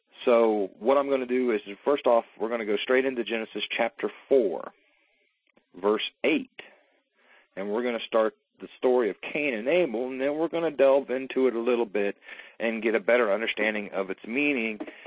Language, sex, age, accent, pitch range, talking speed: English, male, 40-59, American, 105-135 Hz, 200 wpm